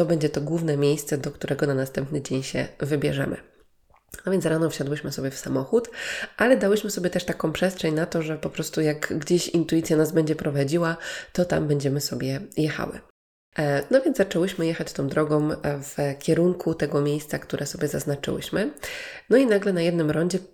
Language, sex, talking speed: Polish, female, 175 wpm